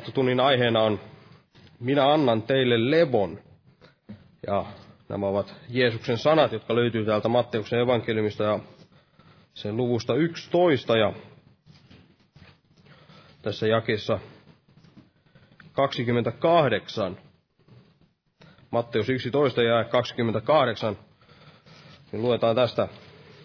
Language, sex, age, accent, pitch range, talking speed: Finnish, male, 30-49, native, 110-145 Hz, 80 wpm